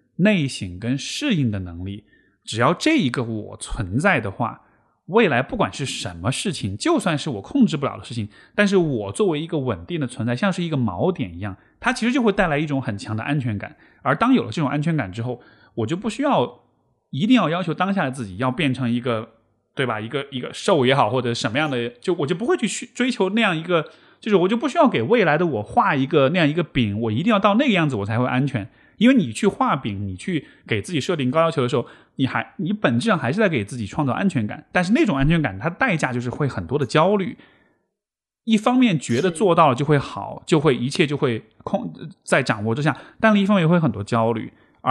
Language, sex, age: Chinese, male, 20-39